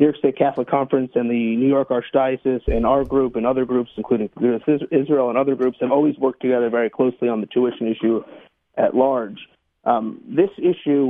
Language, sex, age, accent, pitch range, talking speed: English, male, 30-49, American, 125-145 Hz, 195 wpm